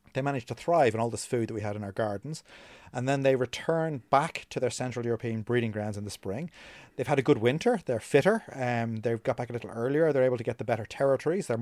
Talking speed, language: 265 wpm, English